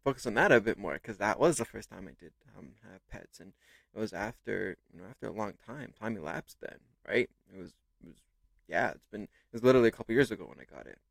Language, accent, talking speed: English, American, 265 wpm